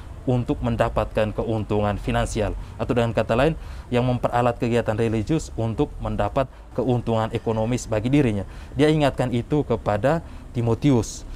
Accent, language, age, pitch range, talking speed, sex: native, Indonesian, 30-49, 110-135 Hz, 120 wpm, male